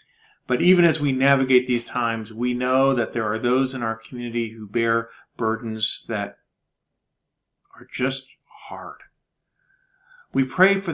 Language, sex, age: English, male, 40-59